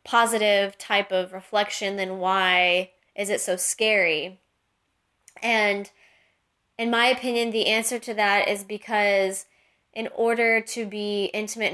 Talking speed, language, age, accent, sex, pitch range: 130 wpm, English, 20-39, American, female, 195-230 Hz